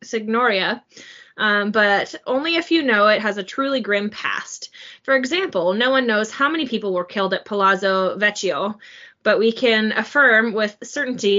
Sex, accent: female, American